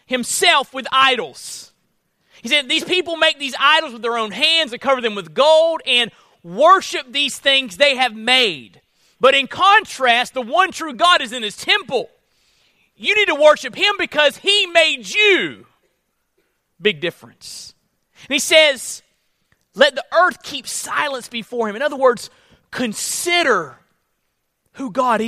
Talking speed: 150 wpm